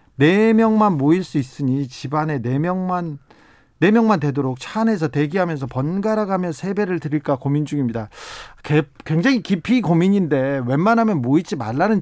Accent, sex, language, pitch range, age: native, male, Korean, 135-195 Hz, 40-59